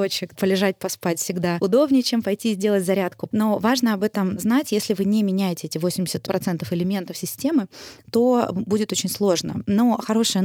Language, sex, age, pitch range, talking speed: Russian, female, 20-39, 180-220 Hz, 155 wpm